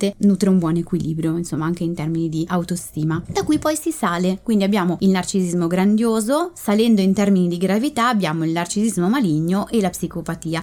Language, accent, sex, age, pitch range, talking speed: Italian, native, female, 20-39, 175-220 Hz, 180 wpm